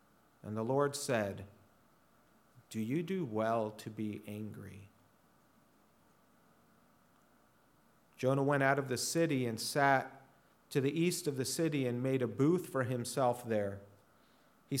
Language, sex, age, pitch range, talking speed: English, male, 40-59, 120-150 Hz, 135 wpm